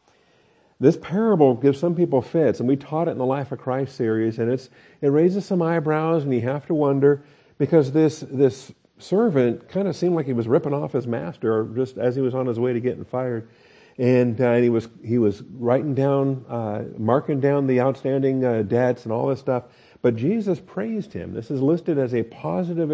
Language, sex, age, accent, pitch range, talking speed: English, male, 50-69, American, 120-150 Hz, 210 wpm